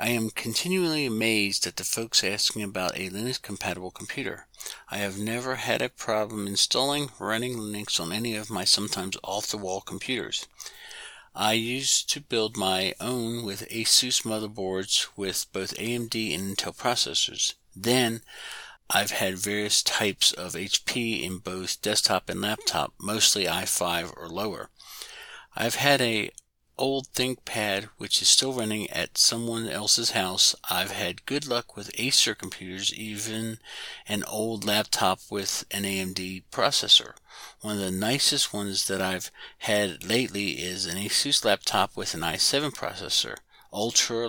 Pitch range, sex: 95-115 Hz, male